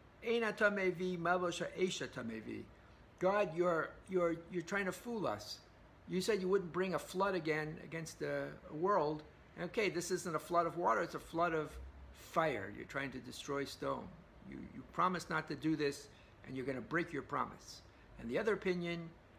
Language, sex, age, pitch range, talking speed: English, male, 60-79, 145-185 Hz, 165 wpm